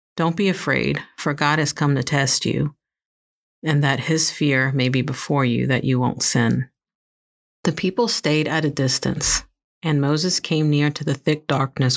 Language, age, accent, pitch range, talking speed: English, 50-69, American, 130-155 Hz, 180 wpm